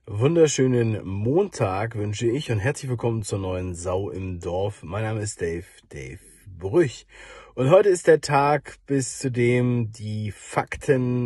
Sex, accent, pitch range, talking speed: male, German, 110-135 Hz, 150 wpm